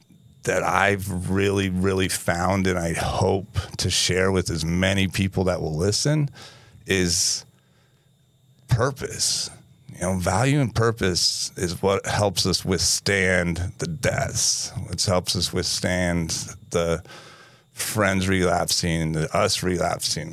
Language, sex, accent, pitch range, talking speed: English, male, American, 95-120 Hz, 120 wpm